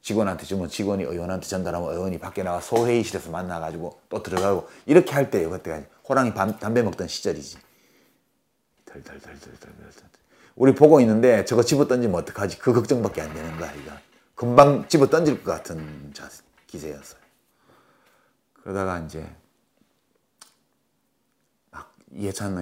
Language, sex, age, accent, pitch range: Korean, male, 30-49, native, 85-115 Hz